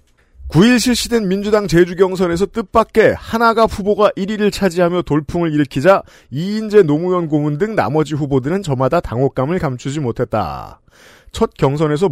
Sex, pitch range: male, 140-190 Hz